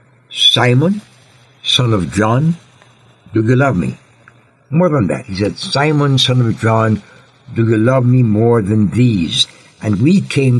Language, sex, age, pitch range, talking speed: English, male, 60-79, 115-135 Hz, 155 wpm